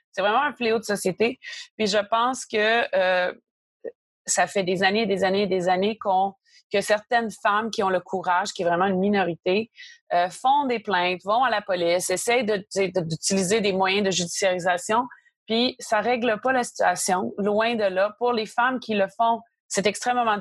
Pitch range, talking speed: 195-245 Hz, 200 wpm